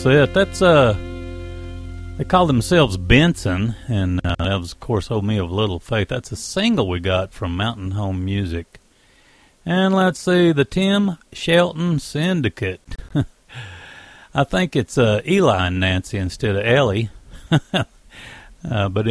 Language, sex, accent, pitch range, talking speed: English, male, American, 95-135 Hz, 145 wpm